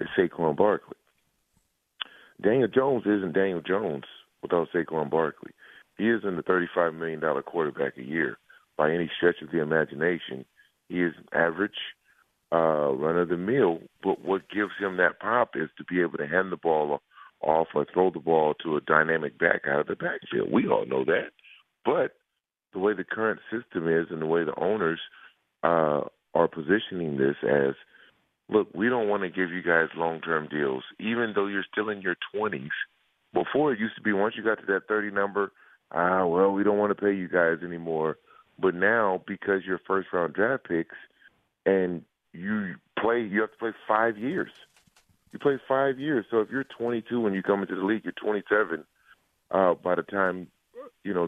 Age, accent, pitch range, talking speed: 40-59, American, 85-105 Hz, 185 wpm